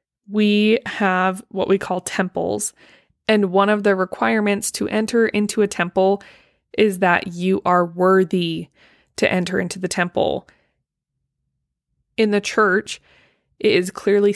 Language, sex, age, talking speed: English, female, 20-39, 135 wpm